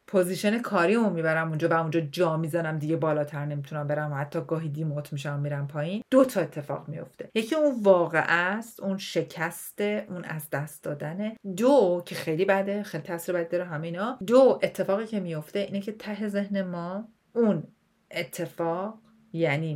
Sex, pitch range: female, 160-210 Hz